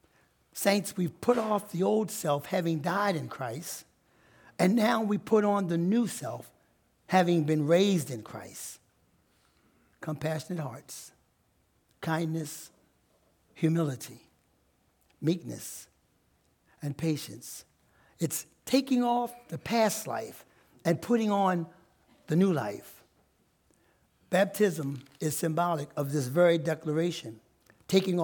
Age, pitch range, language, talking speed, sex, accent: 60-79, 150-195 Hz, English, 110 wpm, male, American